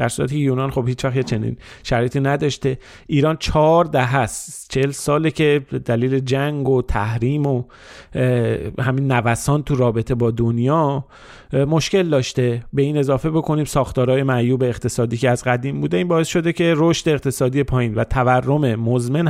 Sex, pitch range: male, 125-155 Hz